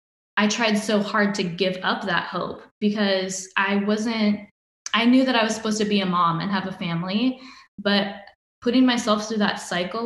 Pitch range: 190-215 Hz